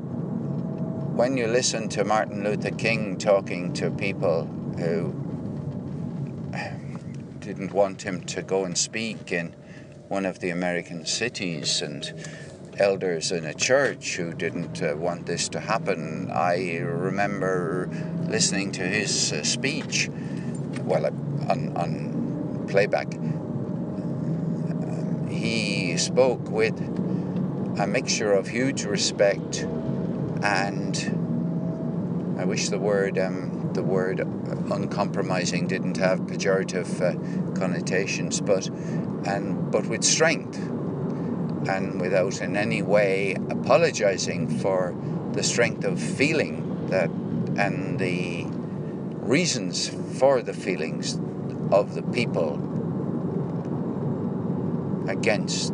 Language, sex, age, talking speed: English, male, 50-69, 100 wpm